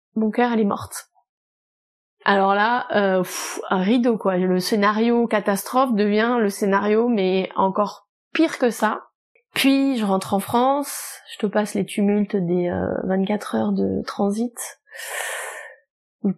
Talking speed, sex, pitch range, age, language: 145 wpm, female, 195-230 Hz, 20-39, French